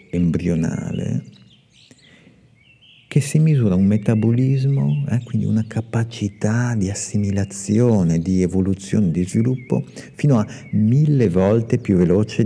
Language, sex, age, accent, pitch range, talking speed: Italian, male, 50-69, native, 95-145 Hz, 105 wpm